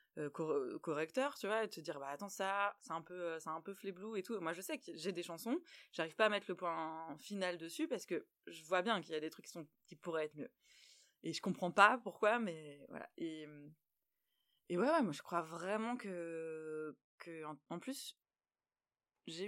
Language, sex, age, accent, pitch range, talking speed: French, female, 20-39, French, 160-210 Hz, 220 wpm